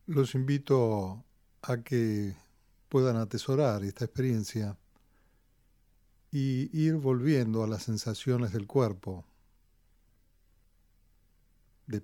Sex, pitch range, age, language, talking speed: male, 105-135 Hz, 40-59, English, 85 wpm